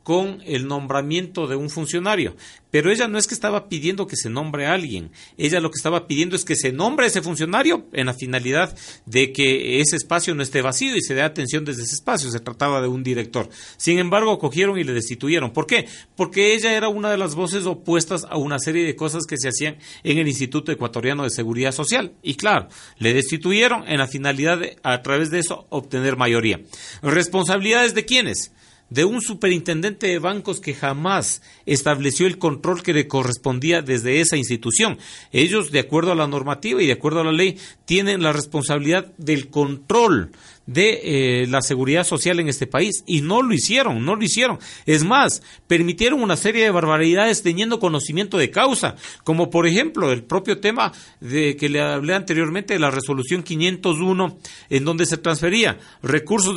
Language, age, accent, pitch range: Spanish, 40-59, Mexican, 140-185 Hz